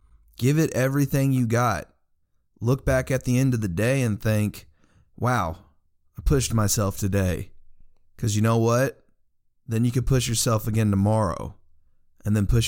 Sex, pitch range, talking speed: male, 95-120 Hz, 160 wpm